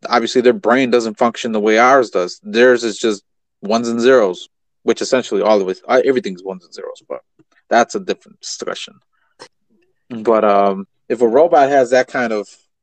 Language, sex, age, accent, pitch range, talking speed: English, male, 30-49, American, 120-145 Hz, 180 wpm